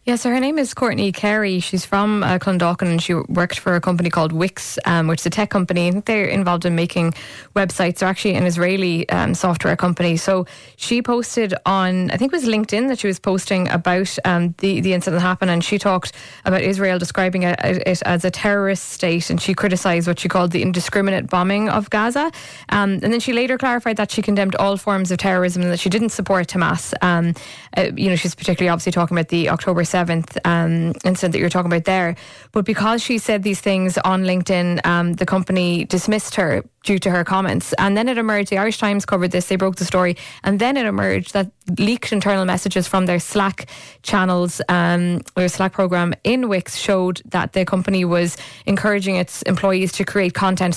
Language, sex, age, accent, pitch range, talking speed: English, female, 20-39, Irish, 175-200 Hz, 210 wpm